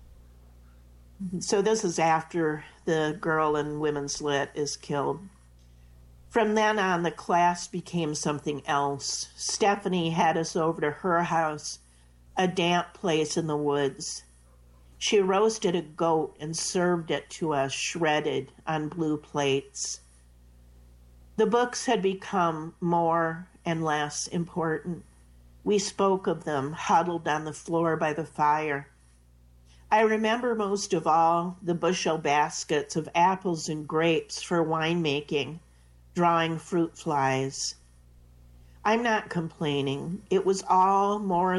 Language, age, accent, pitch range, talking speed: English, 50-69, American, 130-175 Hz, 125 wpm